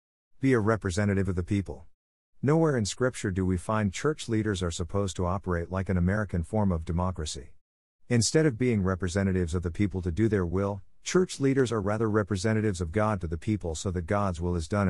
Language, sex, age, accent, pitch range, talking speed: English, male, 50-69, American, 85-115 Hz, 205 wpm